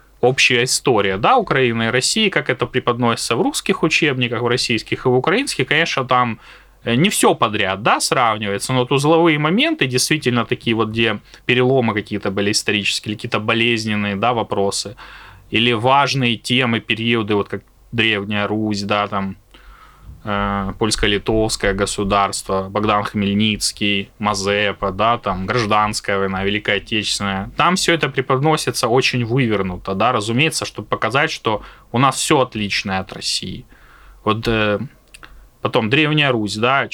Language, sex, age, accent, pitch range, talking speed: Russian, male, 20-39, native, 105-140 Hz, 135 wpm